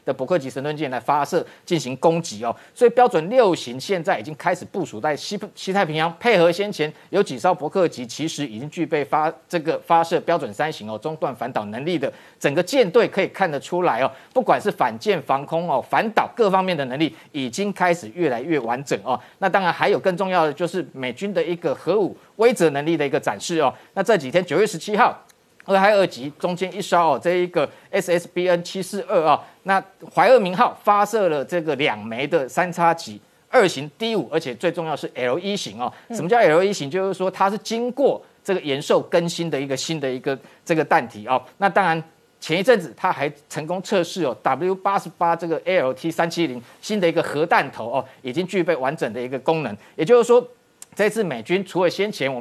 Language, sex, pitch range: Chinese, male, 155-195 Hz